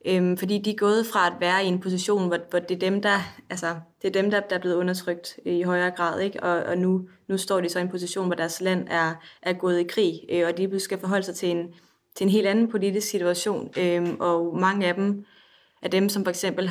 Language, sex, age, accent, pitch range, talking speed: Danish, female, 20-39, native, 170-195 Hz, 225 wpm